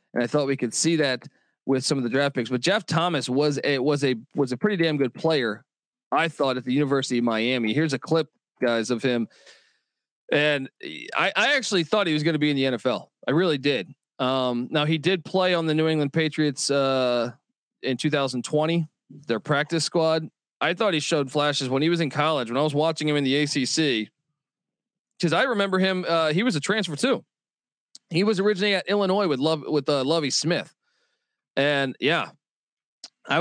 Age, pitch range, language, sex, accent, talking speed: 40-59, 130-170 Hz, English, male, American, 205 wpm